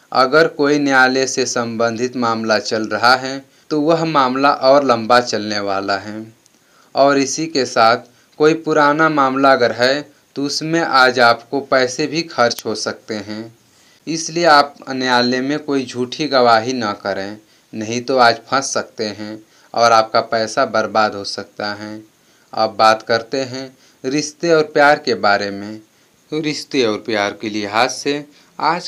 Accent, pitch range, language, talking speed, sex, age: native, 110-145 Hz, Hindi, 160 wpm, male, 30-49